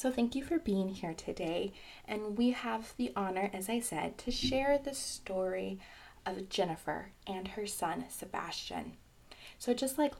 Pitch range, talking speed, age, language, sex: 195-245 Hz, 165 wpm, 20-39, English, female